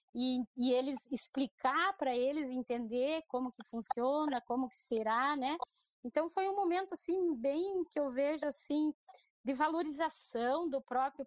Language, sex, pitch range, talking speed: Portuguese, female, 230-285 Hz, 150 wpm